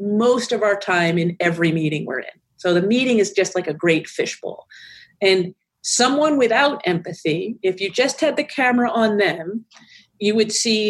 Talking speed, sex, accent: 180 wpm, female, American